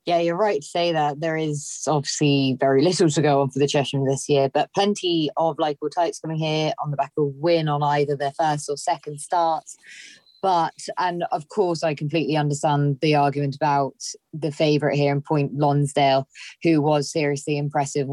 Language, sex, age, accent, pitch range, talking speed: English, female, 20-39, British, 145-170 Hz, 190 wpm